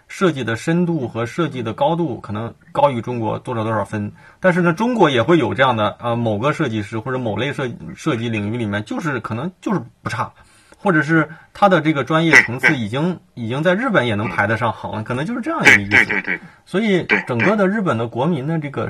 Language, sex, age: Chinese, male, 20-39